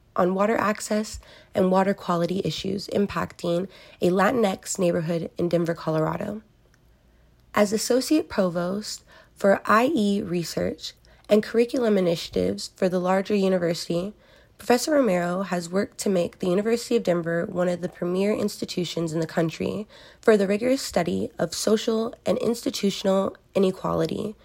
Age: 20-39